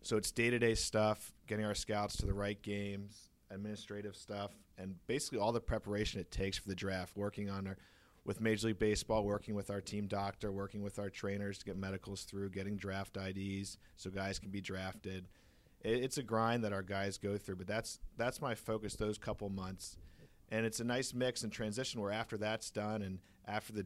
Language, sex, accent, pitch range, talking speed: English, male, American, 95-110 Hz, 205 wpm